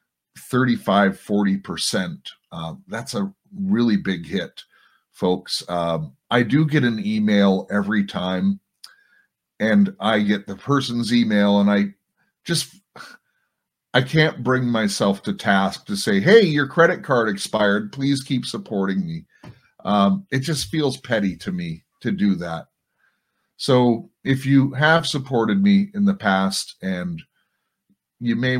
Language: English